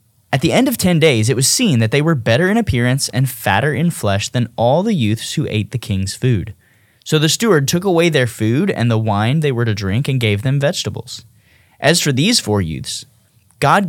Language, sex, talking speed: English, male, 225 wpm